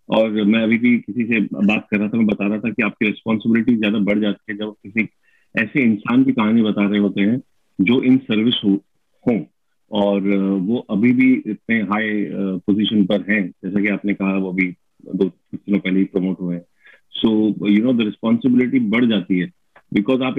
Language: Hindi